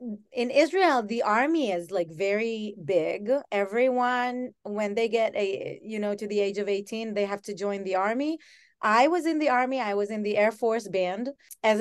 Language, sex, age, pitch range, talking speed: English, female, 30-49, 205-255 Hz, 200 wpm